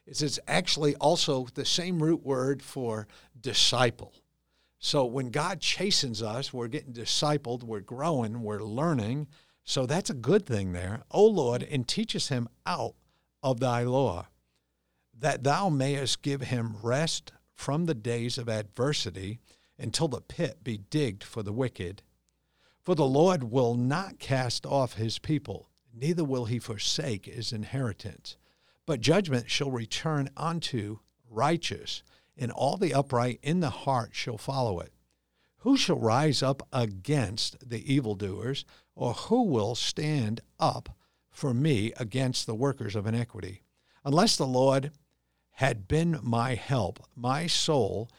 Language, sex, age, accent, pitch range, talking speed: English, male, 50-69, American, 110-150 Hz, 140 wpm